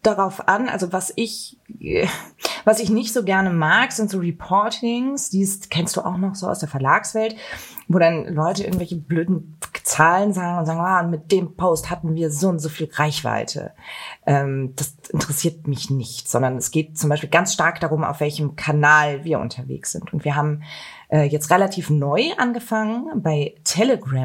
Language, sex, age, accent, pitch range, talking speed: German, female, 30-49, German, 155-220 Hz, 175 wpm